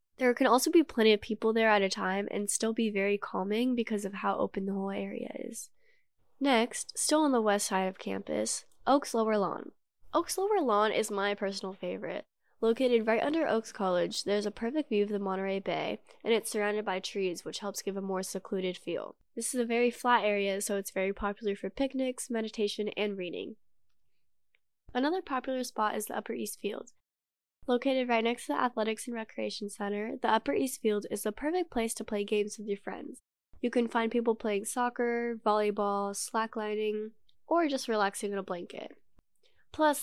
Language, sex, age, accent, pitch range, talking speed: English, female, 10-29, American, 200-245 Hz, 190 wpm